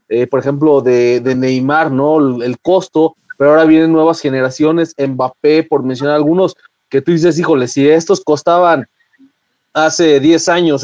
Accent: Mexican